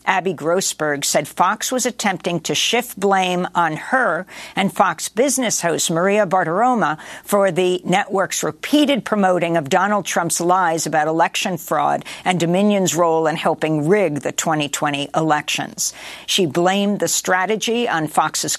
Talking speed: 140 wpm